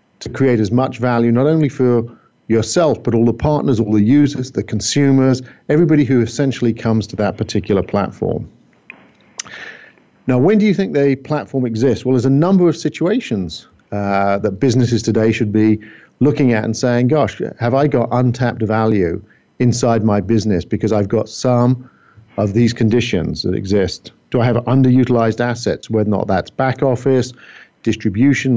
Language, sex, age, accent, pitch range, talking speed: English, male, 50-69, British, 110-130 Hz, 170 wpm